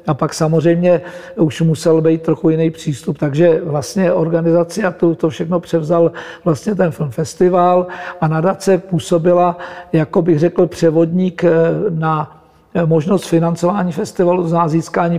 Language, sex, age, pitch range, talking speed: Czech, male, 60-79, 160-175 Hz, 130 wpm